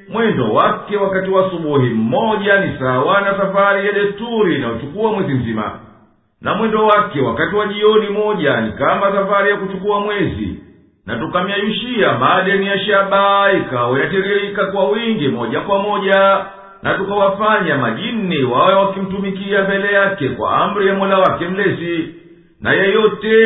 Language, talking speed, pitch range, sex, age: English, 145 wpm, 190-205 Hz, male, 50-69